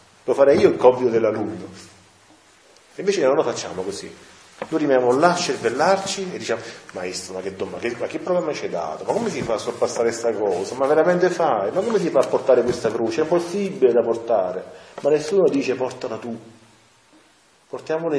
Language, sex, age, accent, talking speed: Italian, male, 40-59, native, 195 wpm